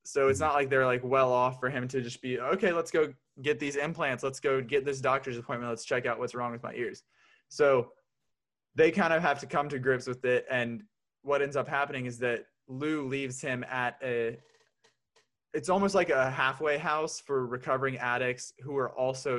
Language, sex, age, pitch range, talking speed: English, male, 20-39, 120-135 Hz, 210 wpm